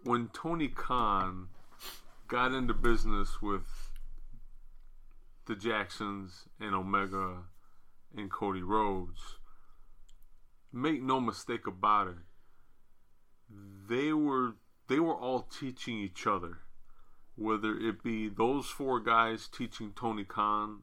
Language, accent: English, American